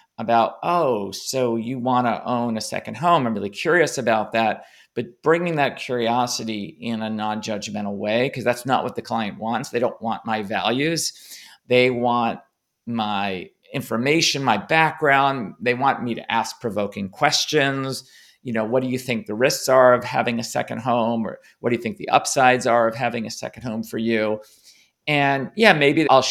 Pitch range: 115-130 Hz